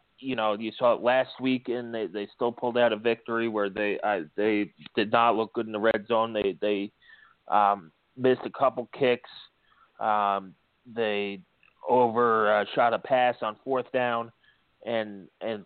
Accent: American